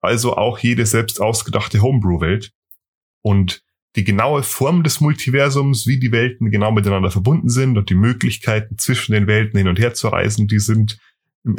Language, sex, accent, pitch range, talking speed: German, male, German, 95-120 Hz, 170 wpm